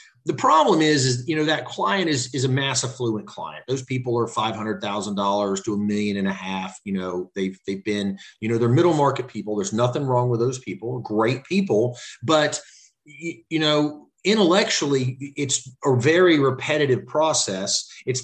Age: 40-59